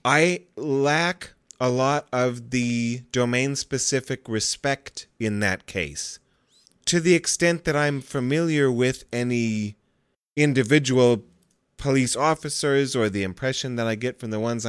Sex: male